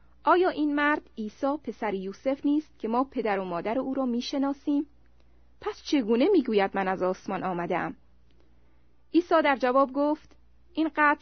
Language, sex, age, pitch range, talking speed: Persian, female, 30-49, 190-280 Hz, 155 wpm